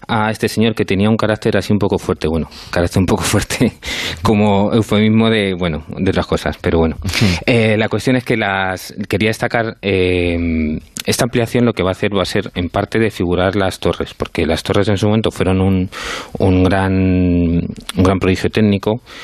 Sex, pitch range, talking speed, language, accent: male, 90-105 Hz, 200 wpm, Spanish, Spanish